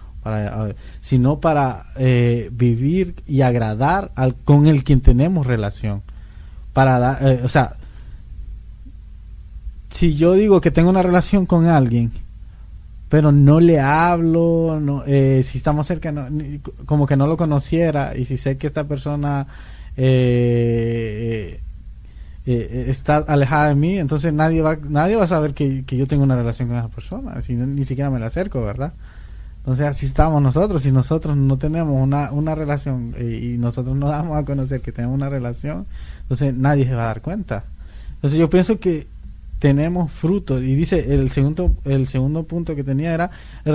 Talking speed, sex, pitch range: 175 wpm, male, 120-155 Hz